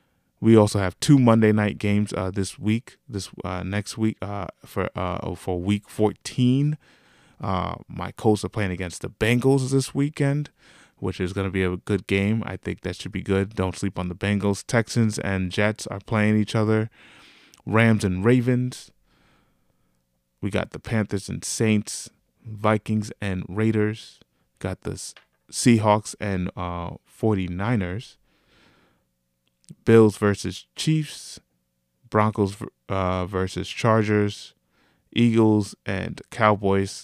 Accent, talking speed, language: American, 135 wpm, English